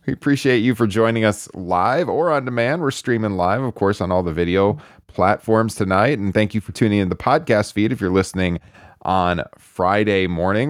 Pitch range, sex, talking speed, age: 95-130 Hz, male, 200 wpm, 30-49